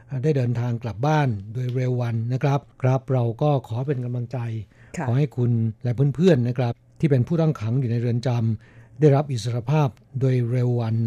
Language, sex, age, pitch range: Thai, male, 60-79, 120-140 Hz